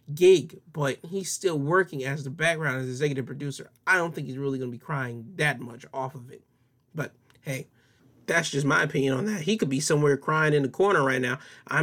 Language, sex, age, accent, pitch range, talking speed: English, male, 20-39, American, 130-155 Hz, 220 wpm